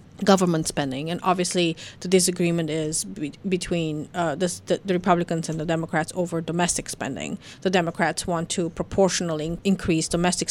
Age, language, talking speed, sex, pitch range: 30-49, English, 150 wpm, female, 165-190 Hz